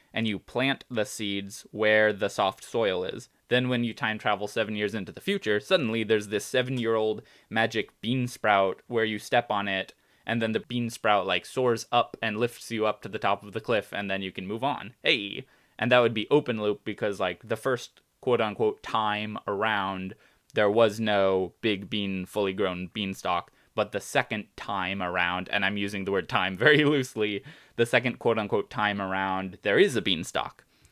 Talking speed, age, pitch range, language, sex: 190 wpm, 20-39, 100-120 Hz, English, male